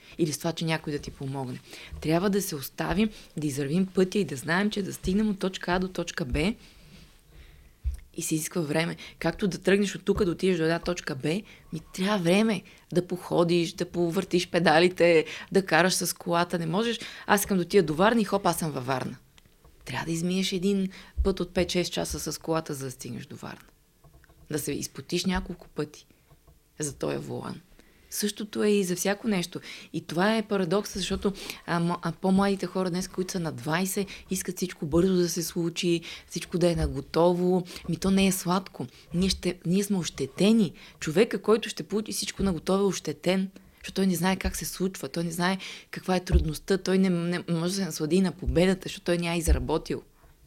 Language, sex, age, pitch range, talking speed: Bulgarian, female, 20-39, 160-195 Hz, 195 wpm